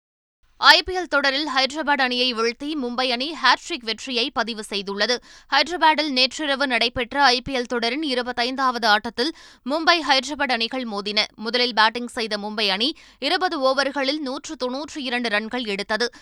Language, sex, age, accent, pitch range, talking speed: Tamil, female, 20-39, native, 235-290 Hz, 120 wpm